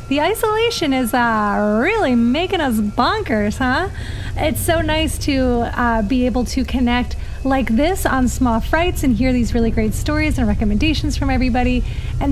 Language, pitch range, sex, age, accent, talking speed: English, 235-300 Hz, female, 30-49, American, 165 wpm